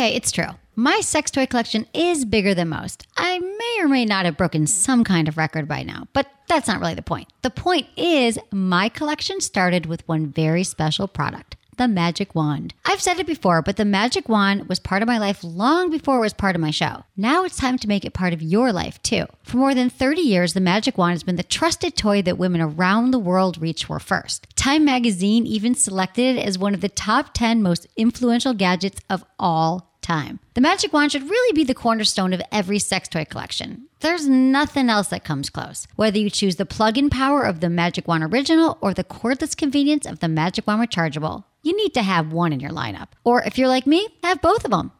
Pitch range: 180-275 Hz